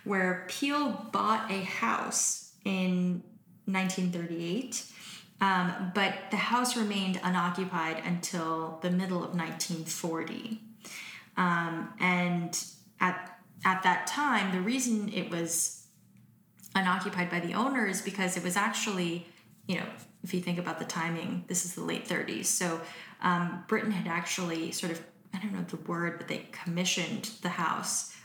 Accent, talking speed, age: American, 140 wpm, 10-29